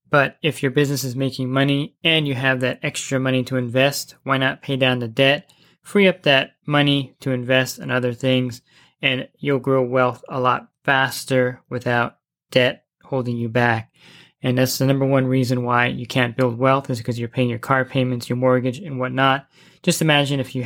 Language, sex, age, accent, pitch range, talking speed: English, male, 20-39, American, 125-140 Hz, 200 wpm